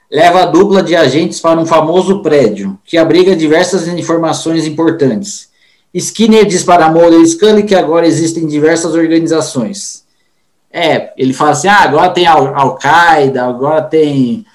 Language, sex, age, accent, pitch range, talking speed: Portuguese, male, 20-39, Brazilian, 145-185 Hz, 155 wpm